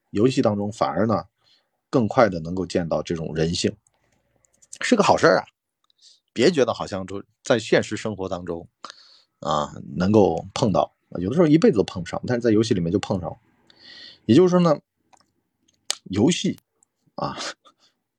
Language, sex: Chinese, male